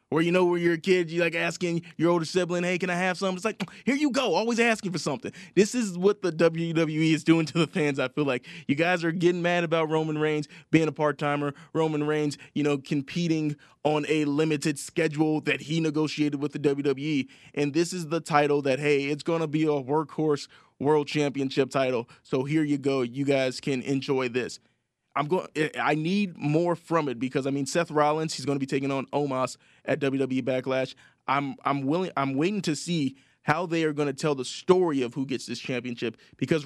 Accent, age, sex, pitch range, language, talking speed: American, 20-39, male, 135-165 Hz, English, 220 wpm